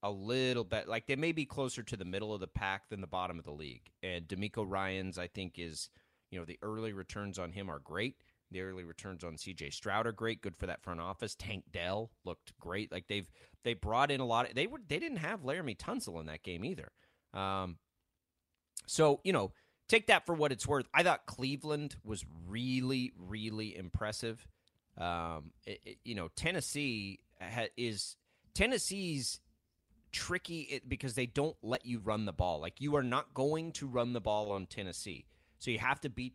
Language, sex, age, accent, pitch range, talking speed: English, male, 30-49, American, 95-130 Hz, 200 wpm